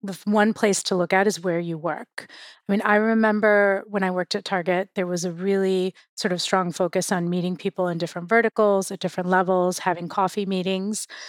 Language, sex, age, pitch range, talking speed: English, female, 30-49, 185-210 Hz, 205 wpm